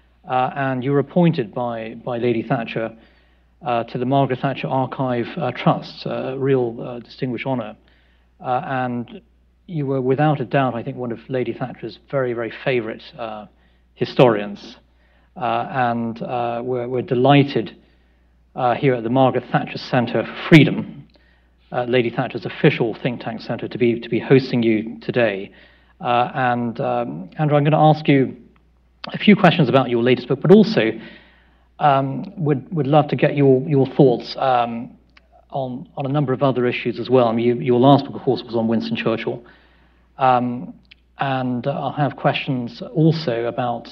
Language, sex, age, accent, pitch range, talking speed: English, male, 40-59, British, 115-145 Hz, 170 wpm